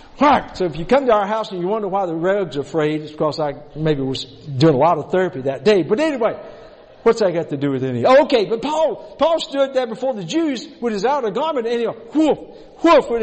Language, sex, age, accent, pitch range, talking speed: English, male, 60-79, American, 170-275 Hz, 245 wpm